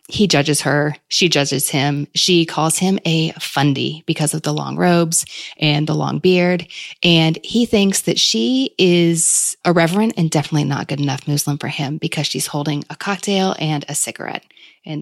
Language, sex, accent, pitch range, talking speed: English, female, American, 155-205 Hz, 175 wpm